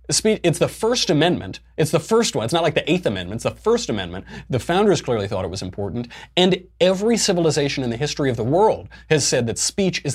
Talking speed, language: 230 wpm, English